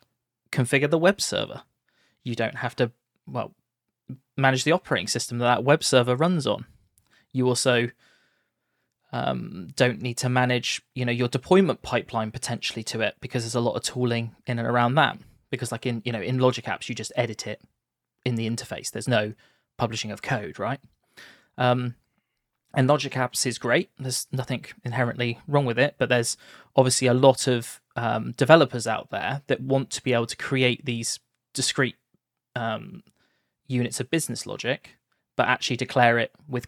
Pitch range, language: 120-135 Hz, English